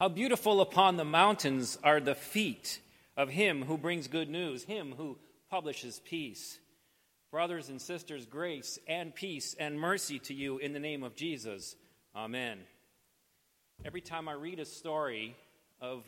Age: 40-59